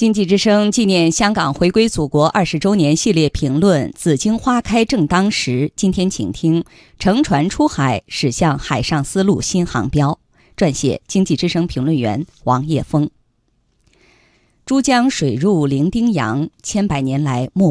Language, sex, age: Chinese, female, 20-39